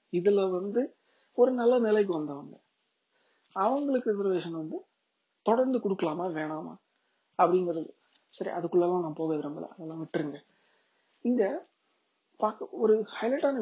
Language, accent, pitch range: Tamil, native, 170-230 Hz